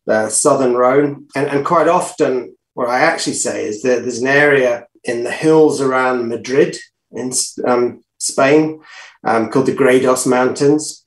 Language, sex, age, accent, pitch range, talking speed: English, male, 30-49, British, 120-150 Hz, 155 wpm